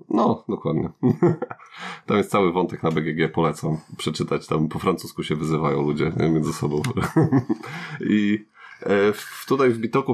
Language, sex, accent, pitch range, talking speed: Polish, male, native, 80-100 Hz, 130 wpm